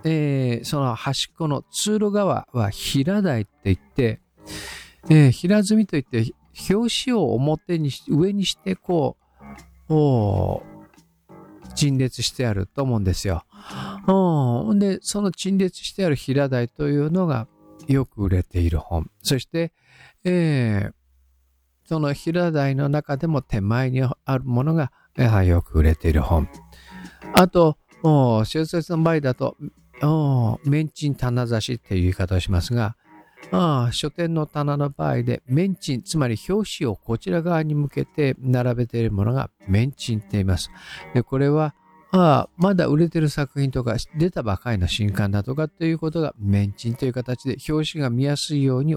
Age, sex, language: 50-69, male, Japanese